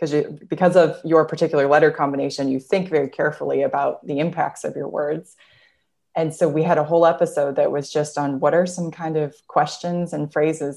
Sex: female